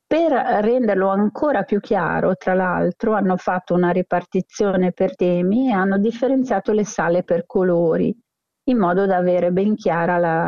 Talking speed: 155 wpm